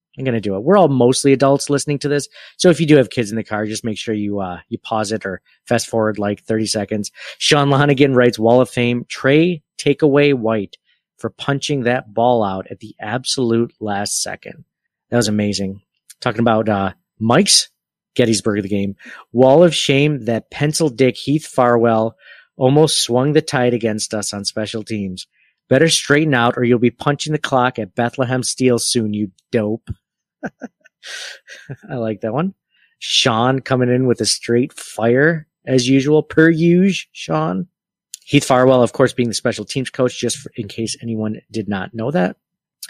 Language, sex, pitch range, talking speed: English, male, 110-140 Hz, 185 wpm